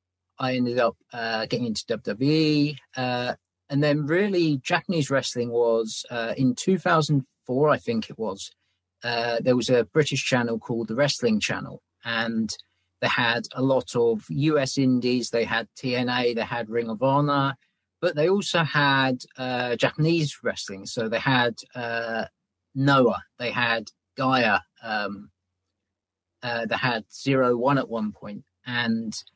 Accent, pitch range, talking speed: British, 115-140 Hz, 145 wpm